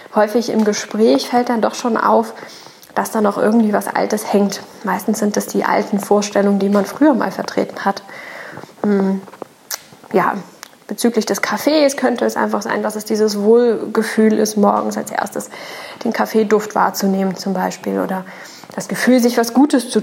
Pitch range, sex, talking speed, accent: 195-245 Hz, female, 170 wpm, German